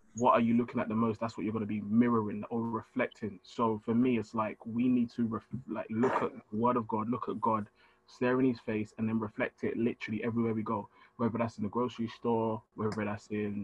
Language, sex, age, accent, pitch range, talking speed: English, male, 20-39, British, 110-120 Hz, 240 wpm